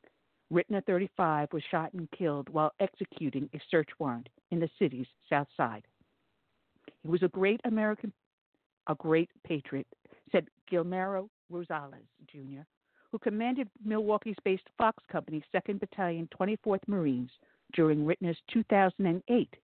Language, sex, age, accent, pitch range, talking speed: English, female, 60-79, American, 150-195 Hz, 120 wpm